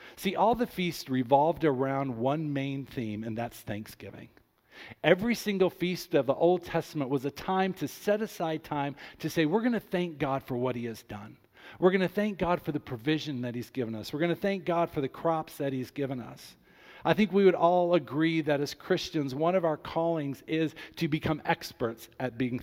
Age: 50-69